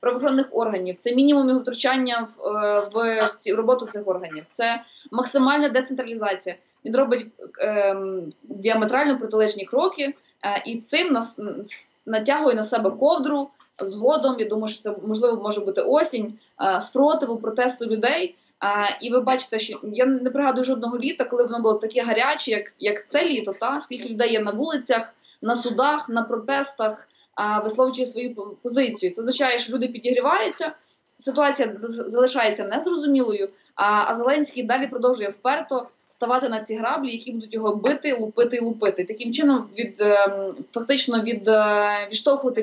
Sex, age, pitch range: female, 20-39, 210-260 Hz